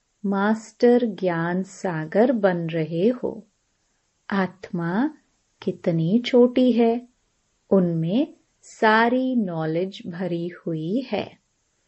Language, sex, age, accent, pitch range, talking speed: Hindi, female, 30-49, native, 175-245 Hz, 80 wpm